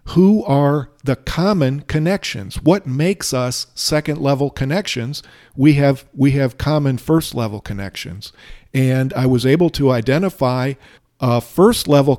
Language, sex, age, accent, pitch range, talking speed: English, male, 50-69, American, 125-155 Hz, 120 wpm